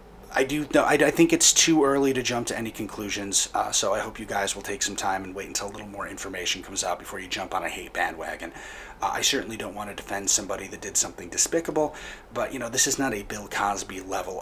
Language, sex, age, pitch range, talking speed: English, male, 30-49, 100-135 Hz, 260 wpm